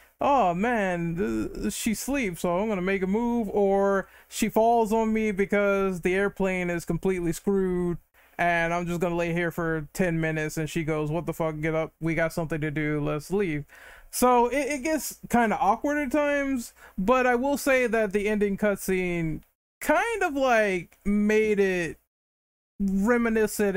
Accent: American